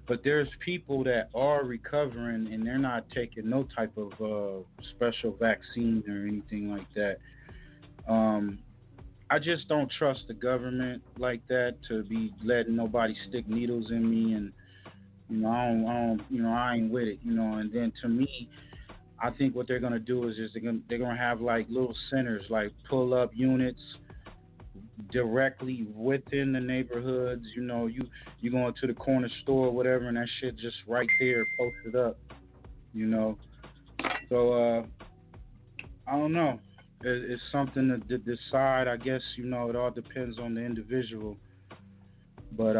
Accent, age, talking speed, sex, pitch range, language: American, 30-49, 165 wpm, male, 110-125 Hz, English